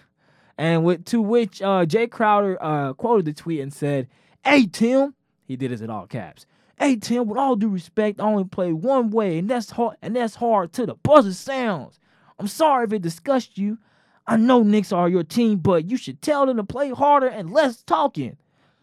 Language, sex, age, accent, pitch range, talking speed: English, male, 20-39, American, 130-210 Hz, 210 wpm